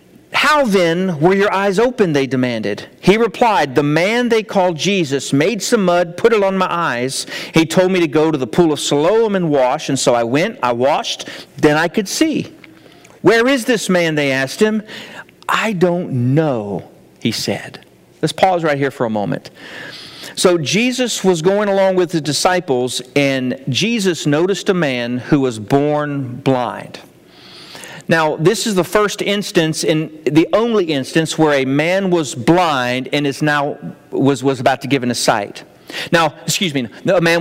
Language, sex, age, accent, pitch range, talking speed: English, male, 50-69, American, 140-190 Hz, 180 wpm